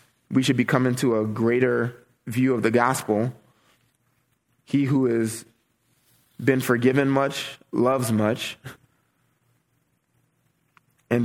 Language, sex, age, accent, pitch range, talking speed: English, male, 20-39, American, 115-130 Hz, 105 wpm